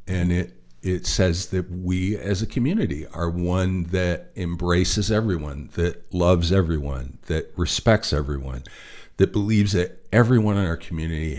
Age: 50-69